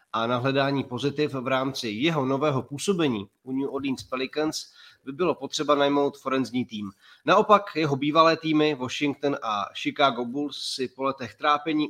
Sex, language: male, Czech